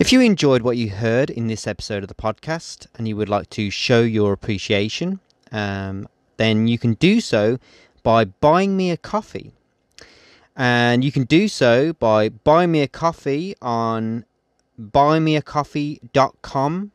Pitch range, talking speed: 110-135 Hz, 150 wpm